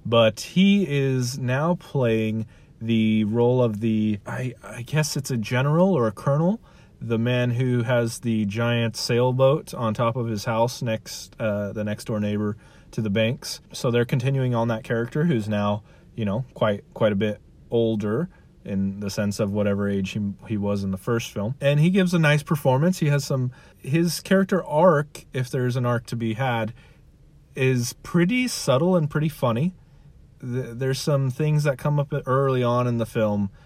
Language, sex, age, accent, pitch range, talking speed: English, male, 30-49, American, 105-140 Hz, 185 wpm